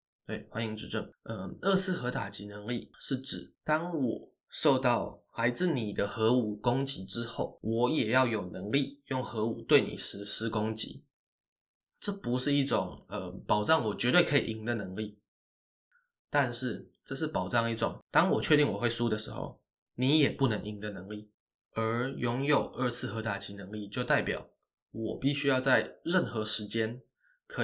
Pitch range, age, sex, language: 105-130 Hz, 20-39, male, Chinese